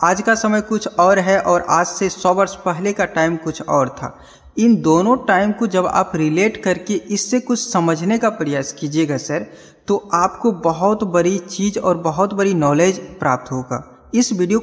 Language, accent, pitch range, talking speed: Hindi, native, 165-205 Hz, 185 wpm